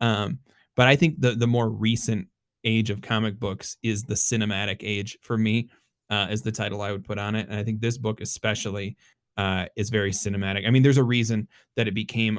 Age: 30-49